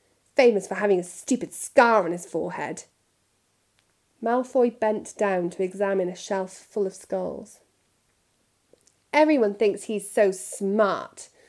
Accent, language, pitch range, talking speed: British, English, 185-255 Hz, 125 wpm